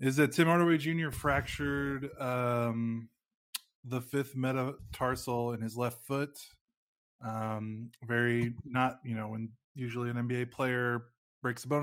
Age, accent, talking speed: 20-39, American, 135 wpm